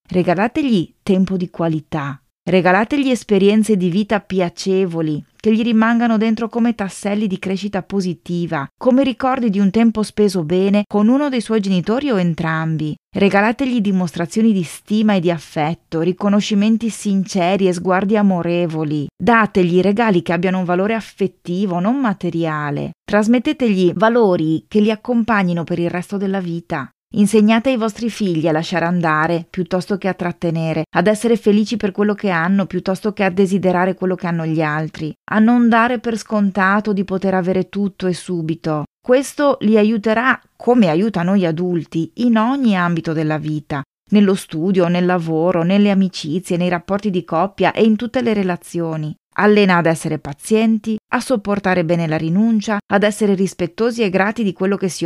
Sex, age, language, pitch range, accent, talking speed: female, 30-49, Italian, 175-215 Hz, native, 160 wpm